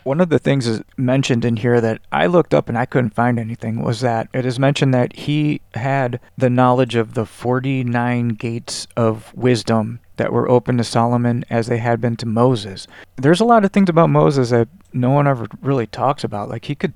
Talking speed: 215 wpm